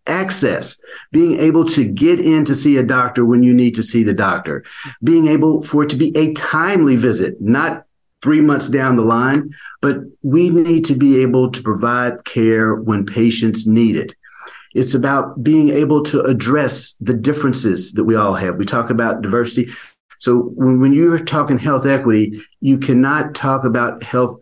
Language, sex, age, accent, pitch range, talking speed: English, male, 50-69, American, 115-135 Hz, 175 wpm